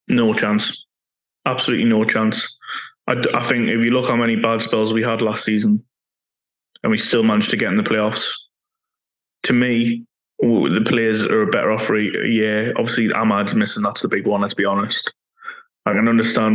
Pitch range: 110-120 Hz